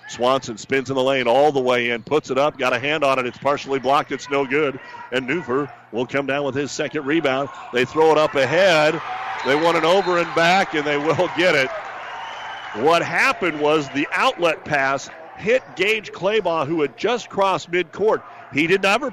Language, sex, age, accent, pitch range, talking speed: English, male, 40-59, American, 135-175 Hz, 205 wpm